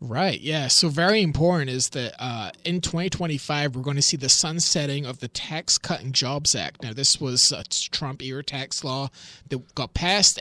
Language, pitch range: English, 135-170 Hz